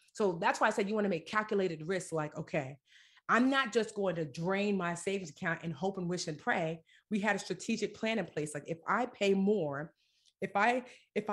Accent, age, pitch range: American, 30-49, 160-200 Hz